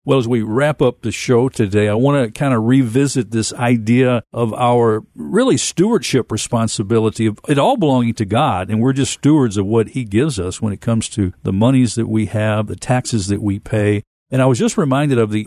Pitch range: 110-140 Hz